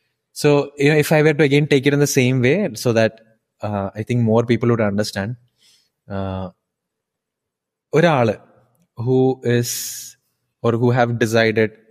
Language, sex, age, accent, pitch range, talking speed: Malayalam, male, 20-39, native, 105-125 Hz, 155 wpm